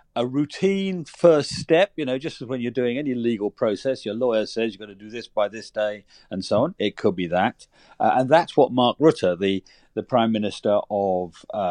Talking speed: 220 wpm